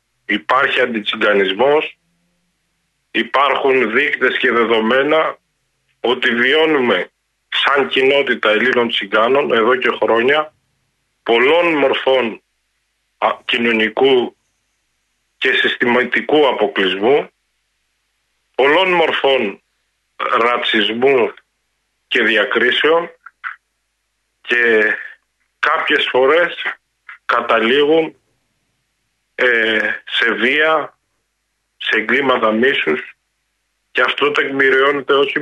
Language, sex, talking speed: Greek, male, 65 wpm